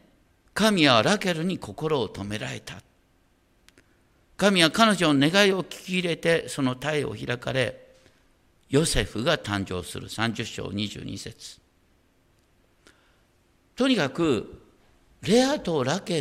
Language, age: Japanese, 60-79